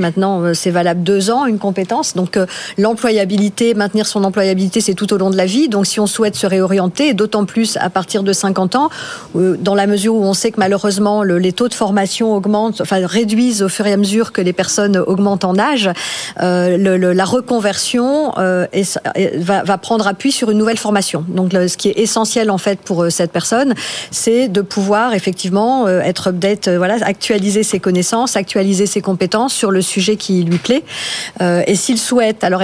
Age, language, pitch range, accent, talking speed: 50-69, French, 185-220 Hz, French, 185 wpm